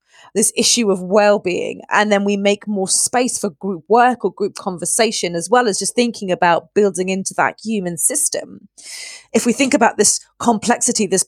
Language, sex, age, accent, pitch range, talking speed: English, female, 30-49, British, 180-225 Hz, 185 wpm